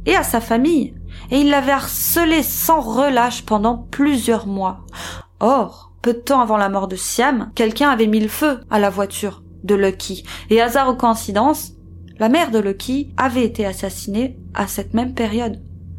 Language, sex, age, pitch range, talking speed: French, female, 30-49, 210-275 Hz, 175 wpm